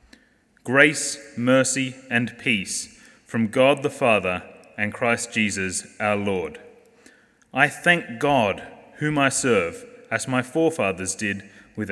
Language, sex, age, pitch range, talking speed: English, male, 30-49, 115-150 Hz, 120 wpm